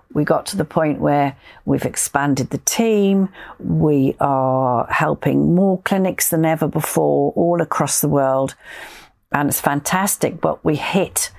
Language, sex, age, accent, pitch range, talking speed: English, female, 50-69, British, 145-180 Hz, 150 wpm